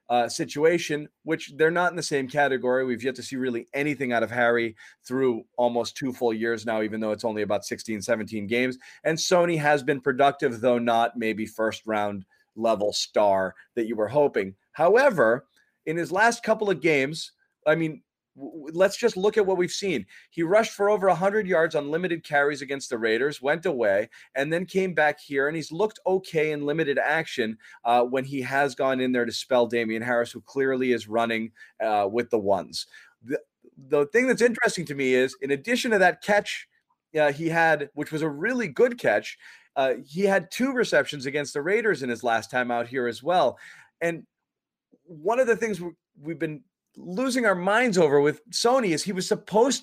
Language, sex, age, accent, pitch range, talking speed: English, male, 30-49, American, 130-195 Hz, 195 wpm